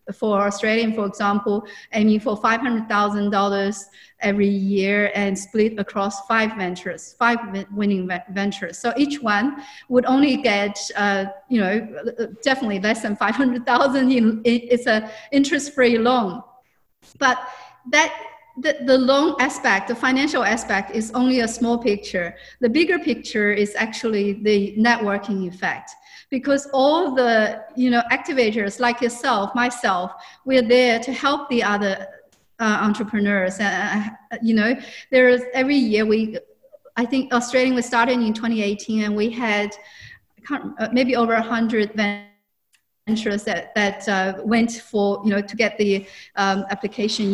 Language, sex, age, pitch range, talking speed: English, female, 40-59, 205-250 Hz, 140 wpm